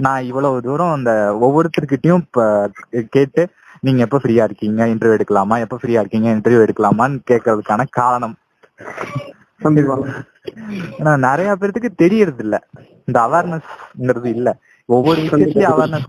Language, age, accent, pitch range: Tamil, 20-39, native, 115-150 Hz